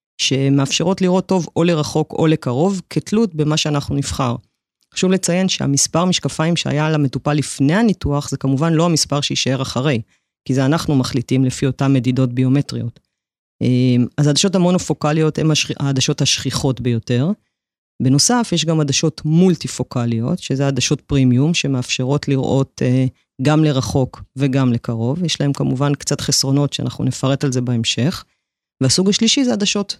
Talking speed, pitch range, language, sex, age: 140 wpm, 130-165 Hz, Hebrew, female, 30-49